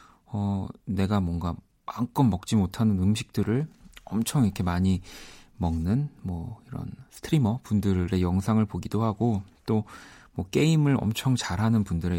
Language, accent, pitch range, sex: Korean, native, 90-125 Hz, male